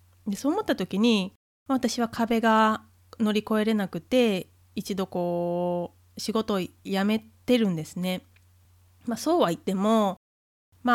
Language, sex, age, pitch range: Japanese, female, 20-39, 180-220 Hz